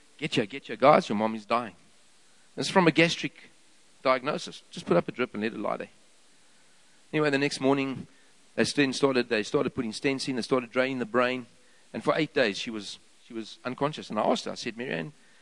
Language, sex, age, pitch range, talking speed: English, male, 40-59, 140-185 Hz, 220 wpm